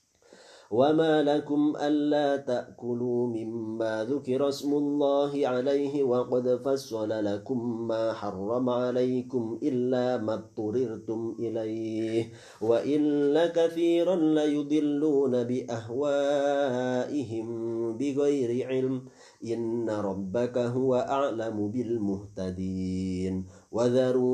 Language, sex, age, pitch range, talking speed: Arabic, male, 50-69, 110-140 Hz, 75 wpm